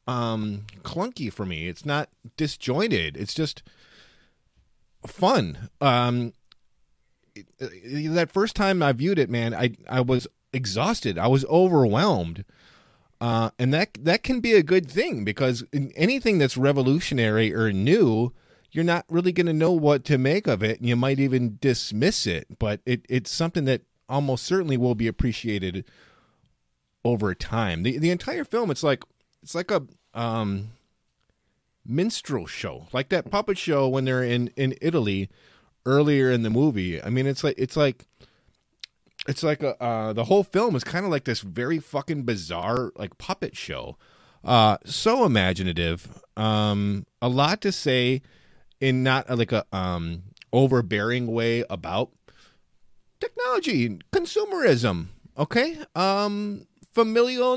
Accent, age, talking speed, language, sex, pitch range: American, 30-49, 150 wpm, English, male, 110-165 Hz